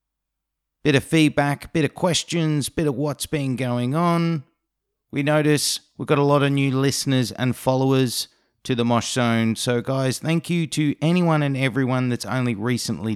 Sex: male